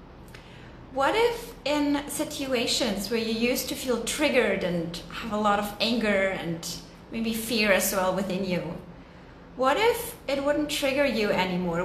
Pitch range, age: 200-270 Hz, 30-49